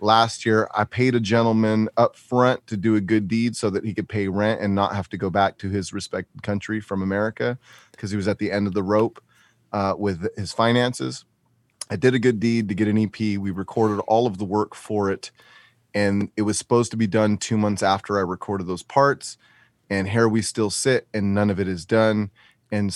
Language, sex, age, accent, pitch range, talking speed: English, male, 30-49, American, 95-110 Hz, 225 wpm